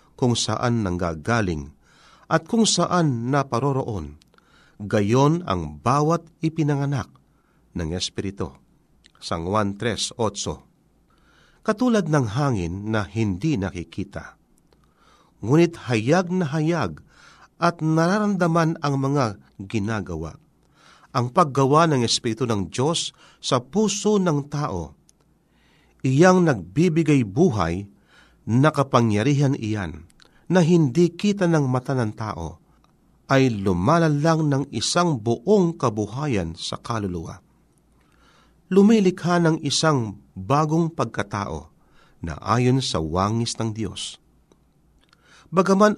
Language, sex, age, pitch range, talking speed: Filipino, male, 50-69, 105-165 Hz, 95 wpm